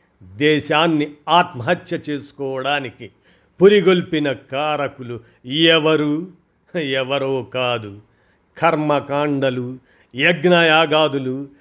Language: Telugu